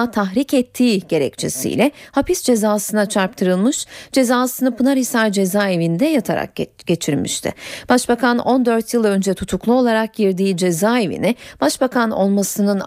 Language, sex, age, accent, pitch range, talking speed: Turkish, female, 30-49, native, 200-275 Hz, 100 wpm